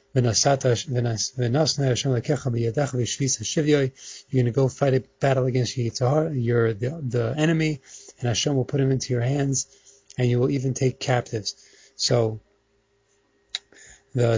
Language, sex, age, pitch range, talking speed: English, male, 30-49, 120-140 Hz, 120 wpm